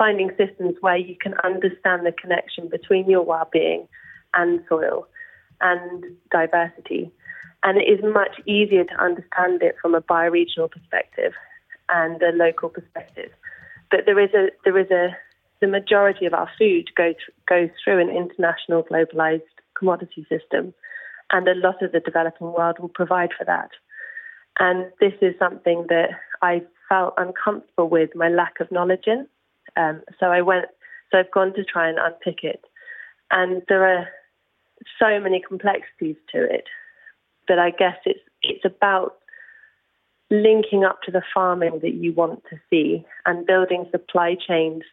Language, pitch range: English, 170-200 Hz